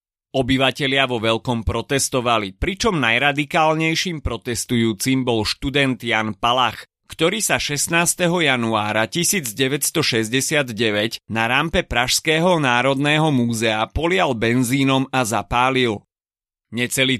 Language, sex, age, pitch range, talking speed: Slovak, male, 30-49, 115-155 Hz, 90 wpm